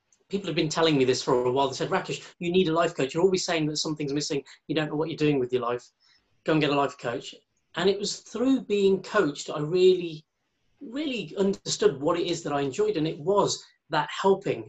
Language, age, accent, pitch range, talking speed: English, 30-49, British, 145-195 Hz, 240 wpm